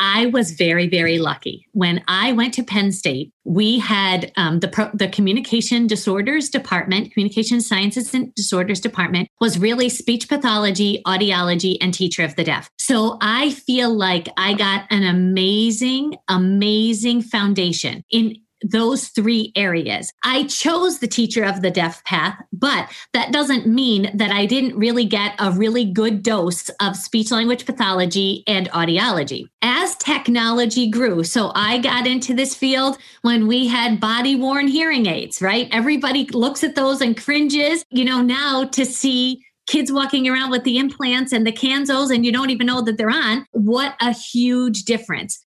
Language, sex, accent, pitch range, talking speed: English, female, American, 205-260 Hz, 165 wpm